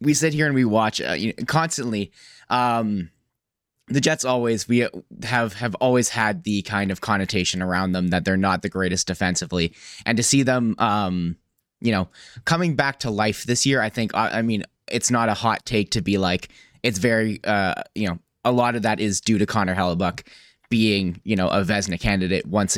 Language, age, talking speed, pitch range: English, 20-39, 200 wpm, 100-130 Hz